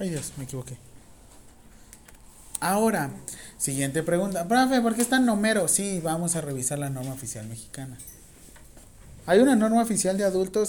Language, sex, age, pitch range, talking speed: Spanish, male, 30-49, 140-220 Hz, 150 wpm